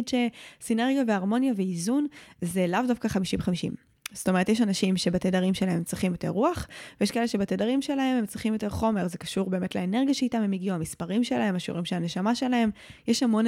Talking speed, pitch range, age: 180 wpm, 180-220 Hz, 10-29